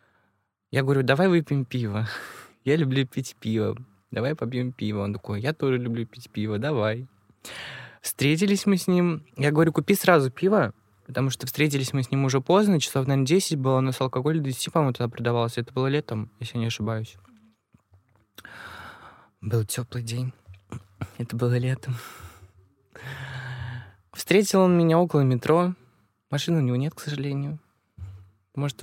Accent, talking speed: native, 150 wpm